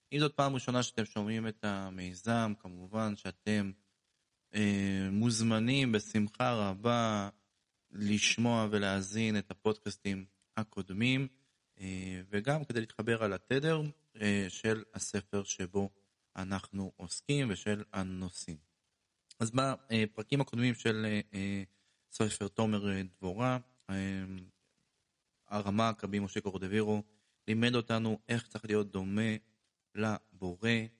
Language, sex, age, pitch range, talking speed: Hebrew, male, 20-39, 95-115 Hz, 105 wpm